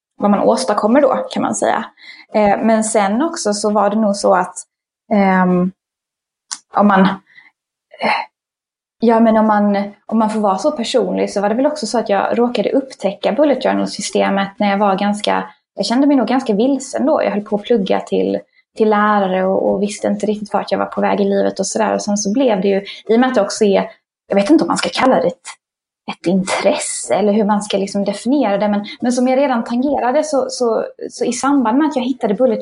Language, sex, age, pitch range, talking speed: Swedish, female, 20-39, 205-260 Hz, 220 wpm